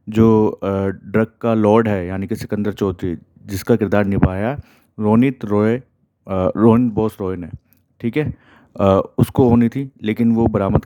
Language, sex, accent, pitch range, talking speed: Hindi, male, native, 105-120 Hz, 150 wpm